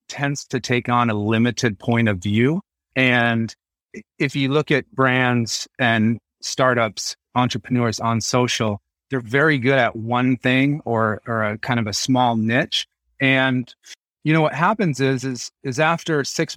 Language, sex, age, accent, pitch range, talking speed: English, male, 30-49, American, 115-140 Hz, 160 wpm